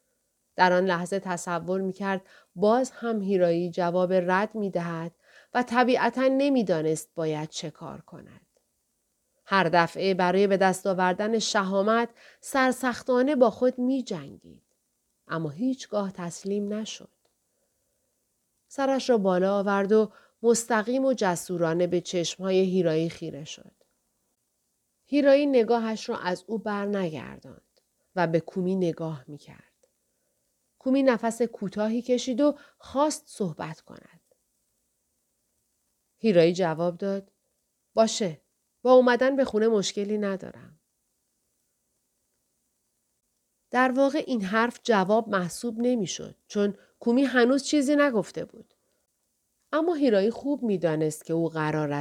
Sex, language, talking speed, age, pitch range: female, Persian, 110 wpm, 30-49, 175-245 Hz